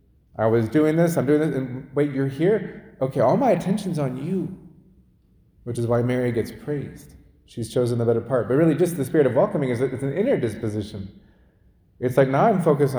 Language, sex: English, male